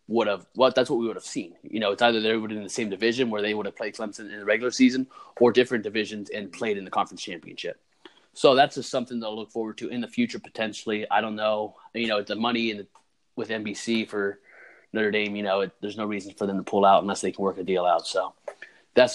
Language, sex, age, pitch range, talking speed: English, male, 20-39, 105-120 Hz, 265 wpm